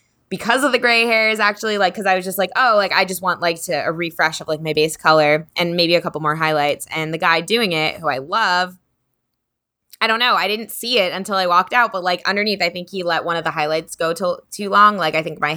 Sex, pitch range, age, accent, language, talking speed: female, 170-235 Hz, 20-39, American, English, 275 wpm